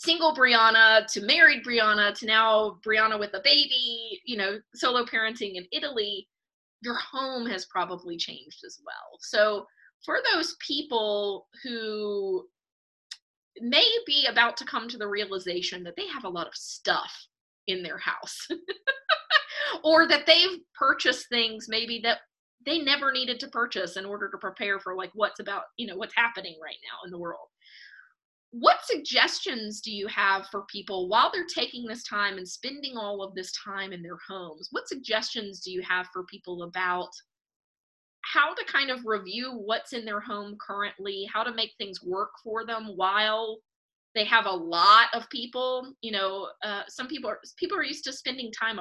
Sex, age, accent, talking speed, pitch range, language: female, 20-39, American, 175 wpm, 200-270 Hz, English